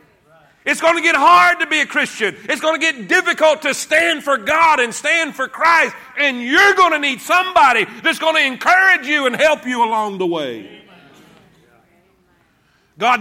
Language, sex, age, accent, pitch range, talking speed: English, male, 40-59, American, 180-275 Hz, 180 wpm